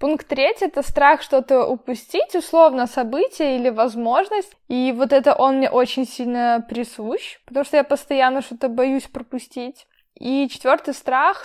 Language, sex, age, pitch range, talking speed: Russian, female, 10-29, 235-265 Hz, 145 wpm